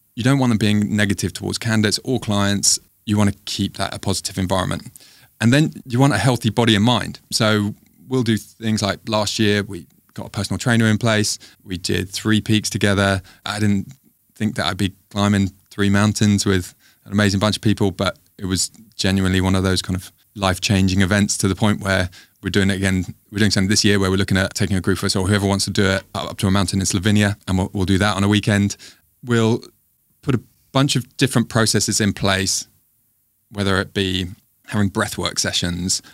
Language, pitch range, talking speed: English, 95-110 Hz, 215 wpm